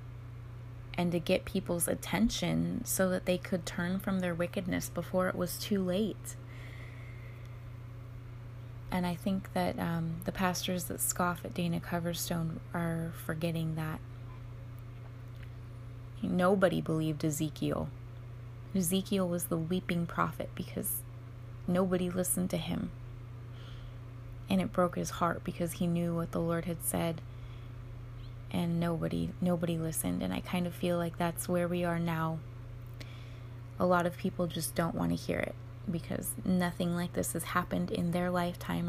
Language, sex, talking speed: English, female, 145 wpm